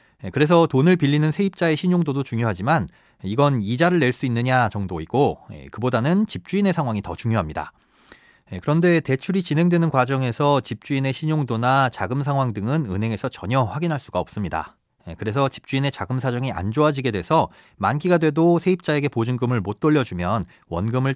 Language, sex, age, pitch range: Korean, male, 30-49, 115-155 Hz